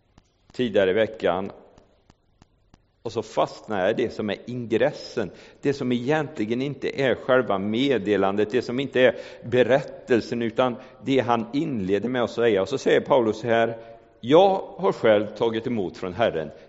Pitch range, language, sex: 110-155 Hz, Swedish, male